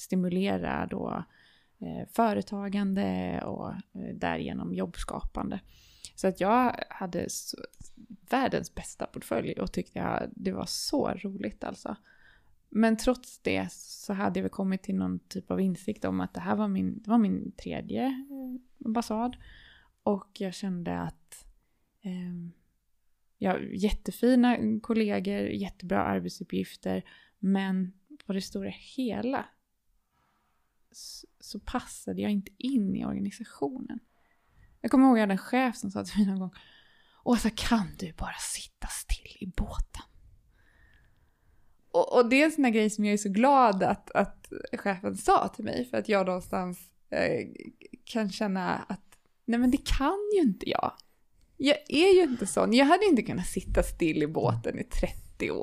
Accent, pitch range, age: native, 180-255 Hz, 20-39